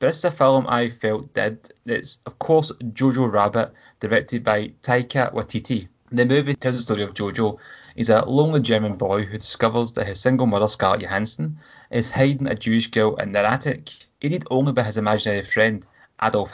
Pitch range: 105-125 Hz